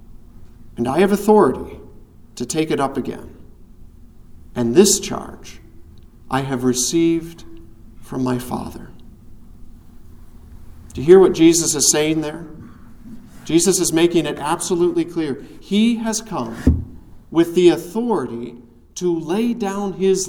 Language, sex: English, male